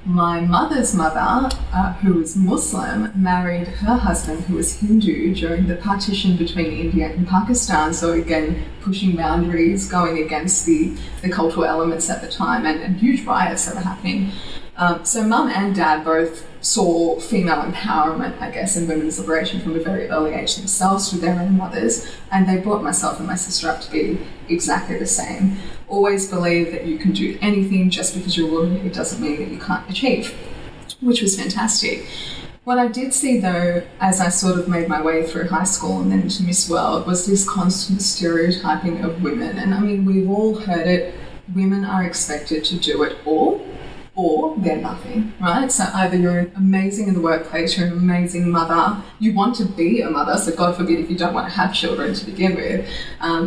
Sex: female